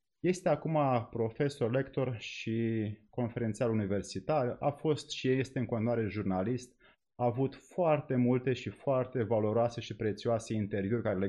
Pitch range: 110-125 Hz